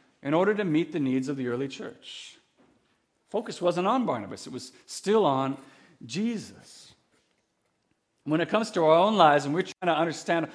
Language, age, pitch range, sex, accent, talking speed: English, 50-69, 140-195 Hz, male, American, 175 wpm